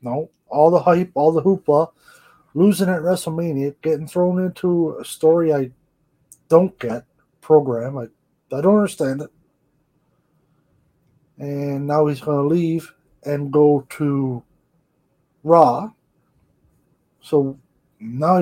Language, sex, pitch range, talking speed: English, male, 135-160 Hz, 115 wpm